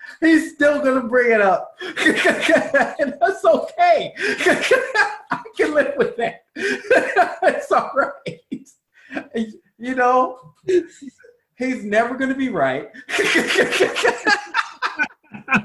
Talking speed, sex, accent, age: 90 wpm, male, American, 20-39